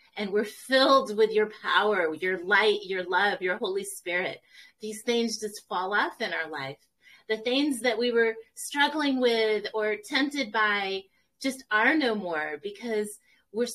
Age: 30-49